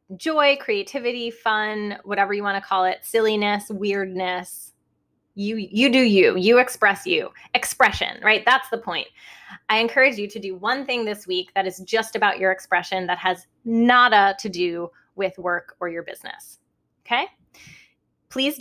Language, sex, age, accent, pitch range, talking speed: English, female, 20-39, American, 185-230 Hz, 160 wpm